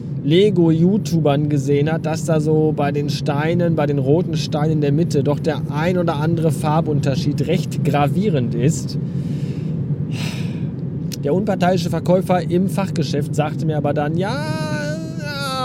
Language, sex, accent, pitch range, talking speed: German, male, German, 150-180 Hz, 140 wpm